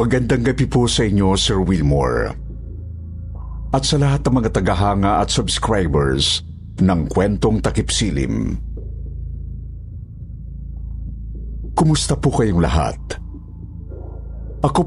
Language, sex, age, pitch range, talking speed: Filipino, male, 50-69, 75-115 Hz, 95 wpm